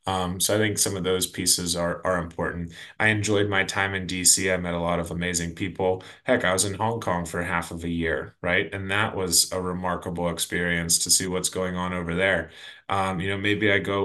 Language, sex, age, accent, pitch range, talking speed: English, male, 20-39, American, 90-105 Hz, 235 wpm